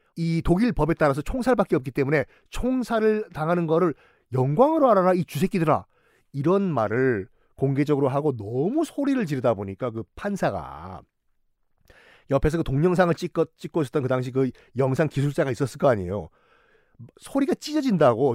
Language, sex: Korean, male